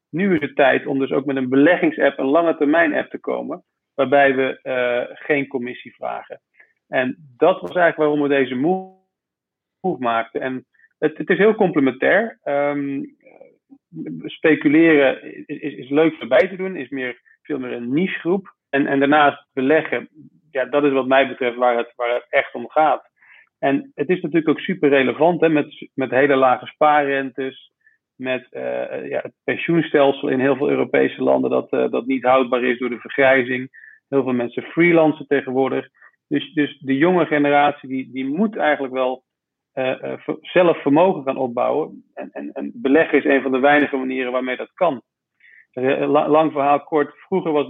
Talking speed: 175 wpm